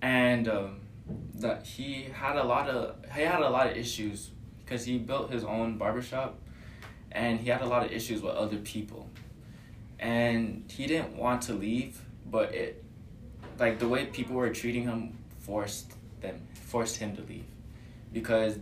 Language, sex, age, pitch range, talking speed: English, male, 20-39, 110-120 Hz, 170 wpm